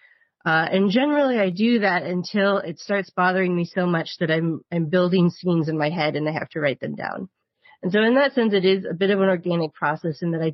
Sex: female